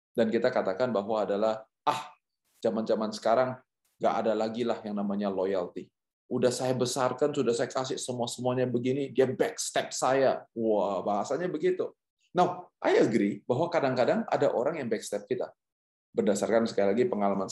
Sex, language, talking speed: male, Indonesian, 145 wpm